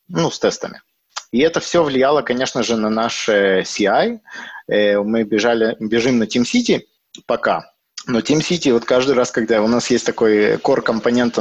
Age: 20-39